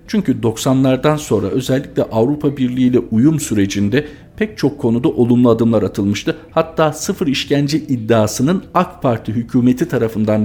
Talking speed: 130 wpm